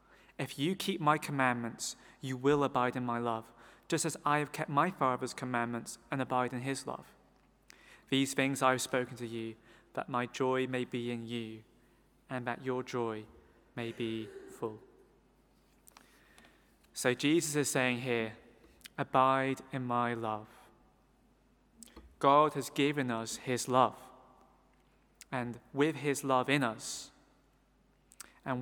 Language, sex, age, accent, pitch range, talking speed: English, male, 20-39, British, 120-140 Hz, 140 wpm